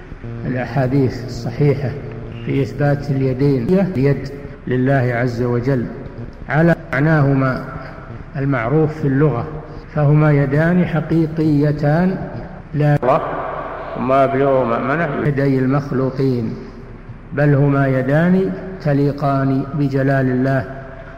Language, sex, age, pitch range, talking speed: Arabic, male, 60-79, 130-150 Hz, 75 wpm